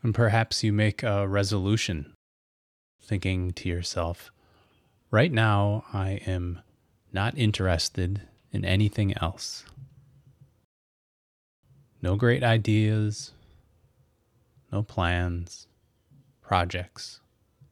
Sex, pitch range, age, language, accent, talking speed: male, 95-115 Hz, 20-39, English, American, 80 wpm